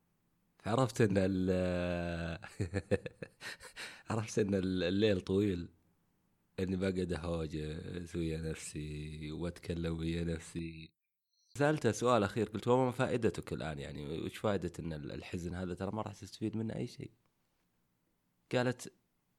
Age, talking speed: 30-49, 110 wpm